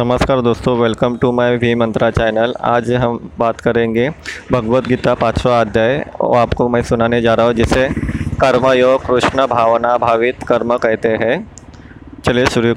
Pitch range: 120-135 Hz